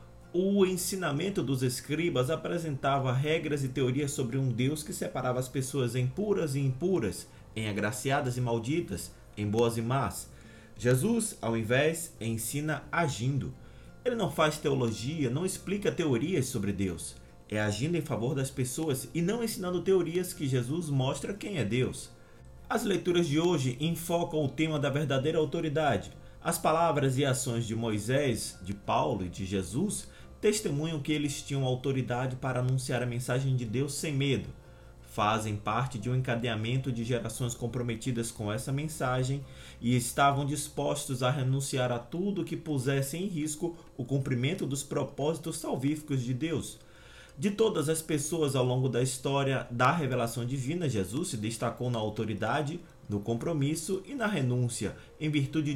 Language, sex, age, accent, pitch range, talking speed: Portuguese, male, 20-39, Brazilian, 120-155 Hz, 155 wpm